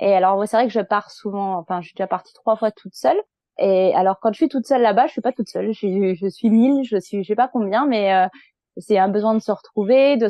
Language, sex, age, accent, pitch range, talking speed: French, female, 20-39, French, 190-235 Hz, 285 wpm